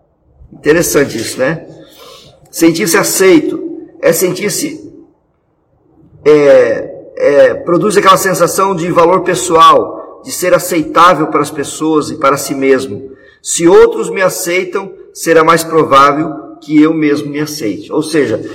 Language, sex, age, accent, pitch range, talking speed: Portuguese, male, 50-69, Brazilian, 155-195 Hz, 125 wpm